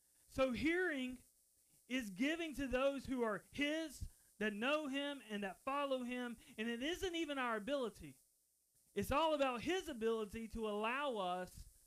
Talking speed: 150 wpm